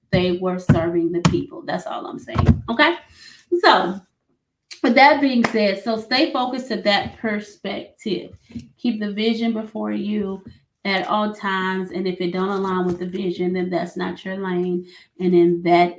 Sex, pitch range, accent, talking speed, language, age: female, 180-230 Hz, American, 170 wpm, English, 30-49